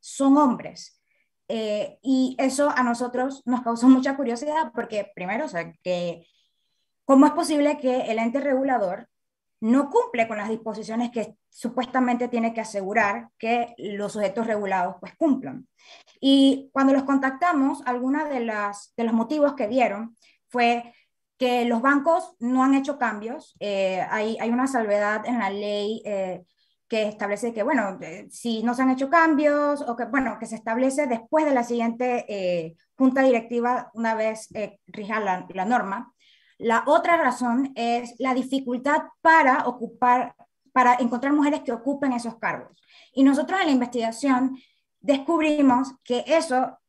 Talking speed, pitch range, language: 155 wpm, 225-275 Hz, Spanish